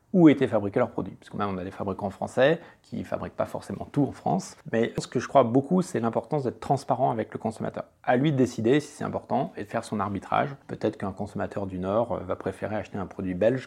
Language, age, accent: French, 30-49, French